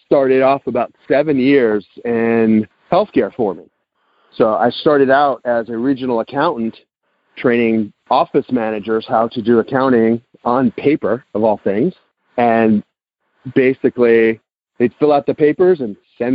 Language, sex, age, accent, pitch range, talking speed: English, male, 40-59, American, 115-140 Hz, 140 wpm